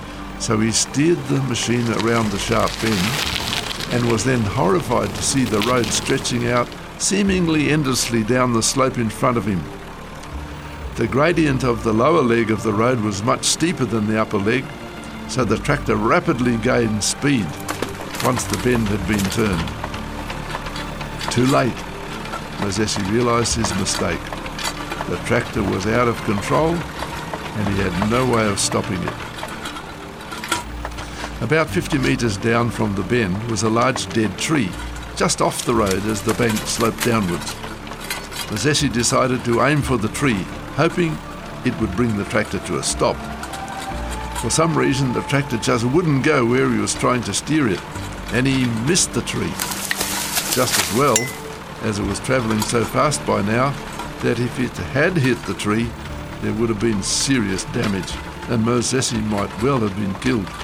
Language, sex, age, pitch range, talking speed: English, male, 60-79, 105-130 Hz, 160 wpm